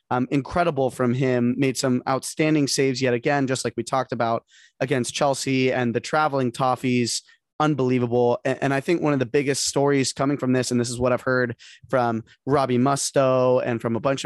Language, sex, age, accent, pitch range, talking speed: English, male, 20-39, American, 125-150 Hz, 200 wpm